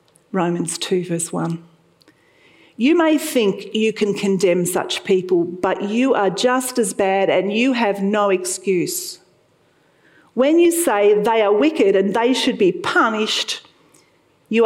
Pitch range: 190-245 Hz